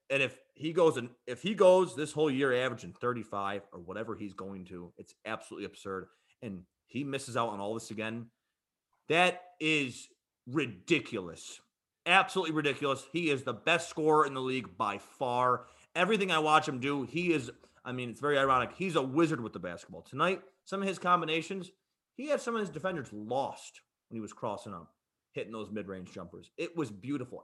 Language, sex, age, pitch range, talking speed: English, male, 30-49, 110-170 Hz, 190 wpm